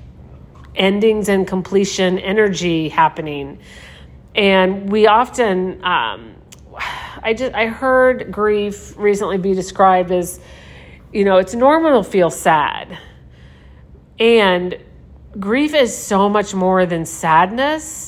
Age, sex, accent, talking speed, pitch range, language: 40-59, female, American, 110 wpm, 165-205 Hz, English